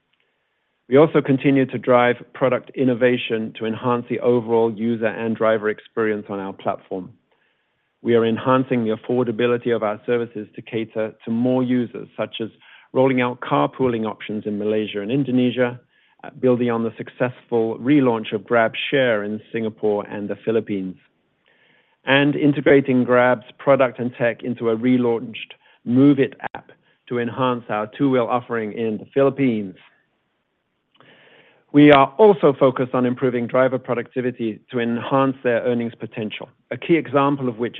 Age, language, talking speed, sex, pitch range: 50-69, English, 145 wpm, male, 110-125 Hz